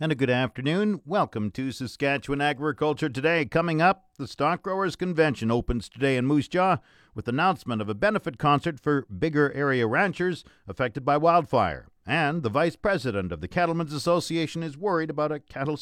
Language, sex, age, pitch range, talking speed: English, male, 50-69, 110-165 Hz, 175 wpm